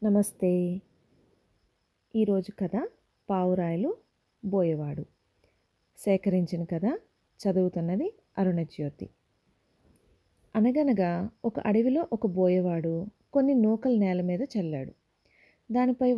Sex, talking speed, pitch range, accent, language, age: female, 75 wpm, 180-235 Hz, native, Telugu, 30-49